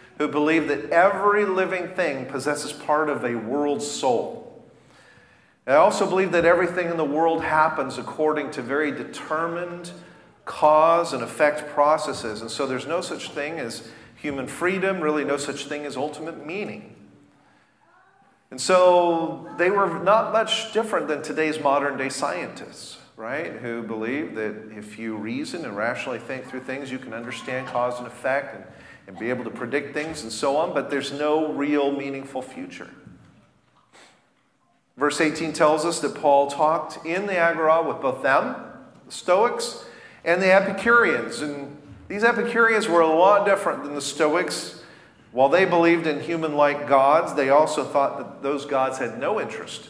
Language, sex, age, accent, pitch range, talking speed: English, male, 40-59, American, 135-170 Hz, 160 wpm